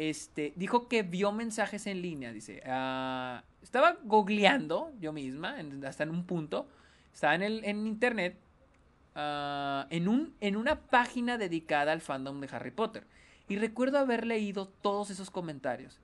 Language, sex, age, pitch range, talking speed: Spanish, male, 30-49, 140-210 Hz, 155 wpm